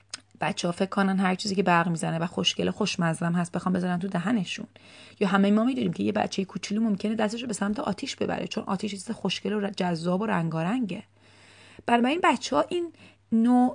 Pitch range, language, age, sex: 175-220 Hz, Persian, 30-49, female